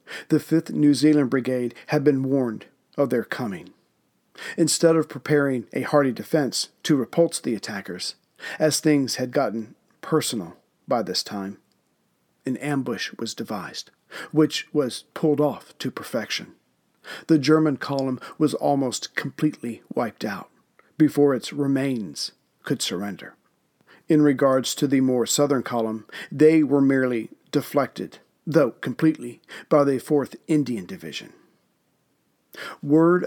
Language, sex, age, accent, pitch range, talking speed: English, male, 50-69, American, 125-150 Hz, 130 wpm